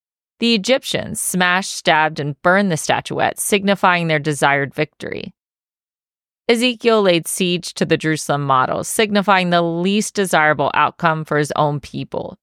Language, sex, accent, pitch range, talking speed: English, female, American, 155-205 Hz, 135 wpm